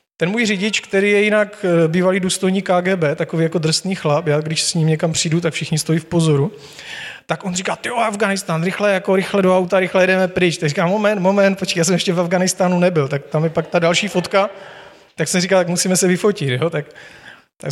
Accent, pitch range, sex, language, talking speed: native, 155-185 Hz, male, Czech, 220 wpm